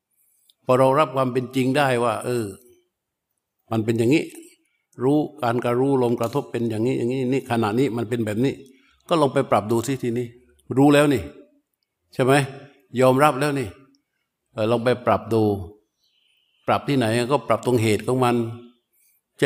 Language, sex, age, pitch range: Thai, male, 60-79, 110-130 Hz